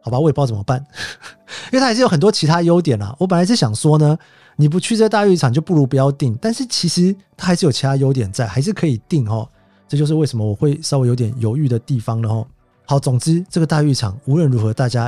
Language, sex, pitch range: Chinese, male, 120-165 Hz